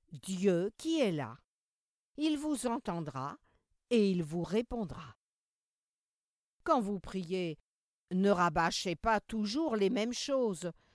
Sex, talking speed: female, 115 wpm